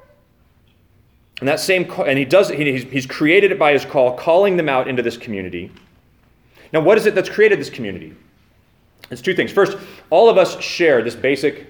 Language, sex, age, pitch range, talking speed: English, male, 30-49, 115-180 Hz, 195 wpm